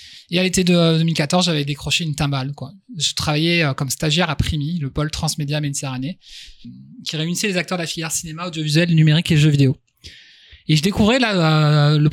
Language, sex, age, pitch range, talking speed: French, male, 20-39, 140-170 Hz, 190 wpm